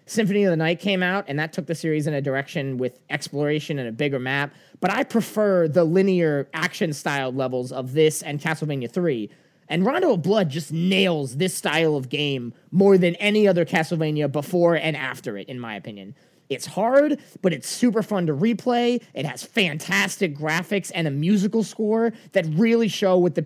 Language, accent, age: English, American, 20-39